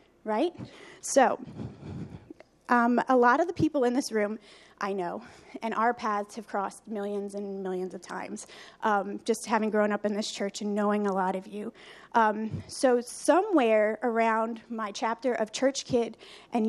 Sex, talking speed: female, 170 wpm